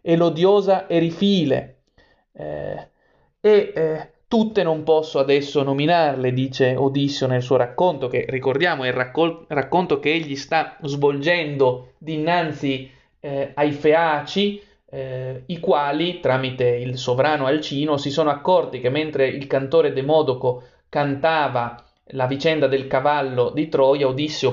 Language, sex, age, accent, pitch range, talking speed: Italian, male, 30-49, native, 130-160 Hz, 125 wpm